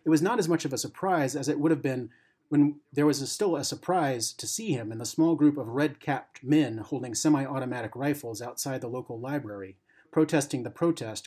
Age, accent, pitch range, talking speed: 30-49, American, 120-155 Hz, 210 wpm